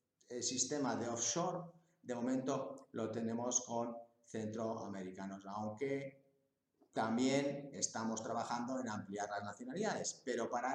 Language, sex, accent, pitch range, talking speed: English, male, Spanish, 100-130 Hz, 110 wpm